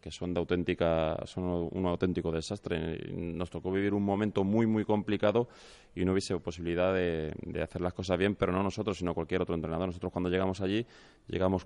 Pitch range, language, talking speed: 85-95 Hz, Spanish, 195 wpm